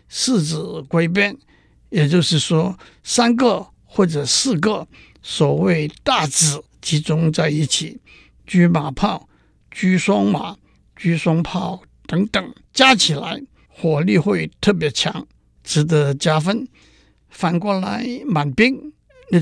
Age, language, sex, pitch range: 60-79, Chinese, male, 155-210 Hz